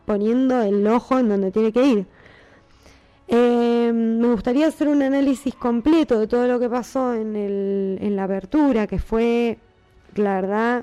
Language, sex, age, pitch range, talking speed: Spanish, female, 20-39, 195-245 Hz, 160 wpm